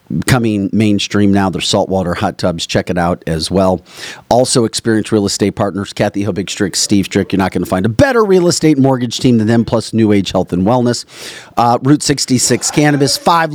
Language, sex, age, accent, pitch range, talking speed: English, male, 40-59, American, 105-145 Hz, 205 wpm